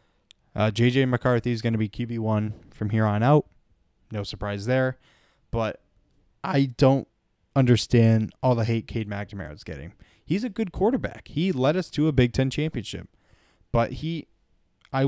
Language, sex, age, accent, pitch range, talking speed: English, male, 20-39, American, 100-130 Hz, 165 wpm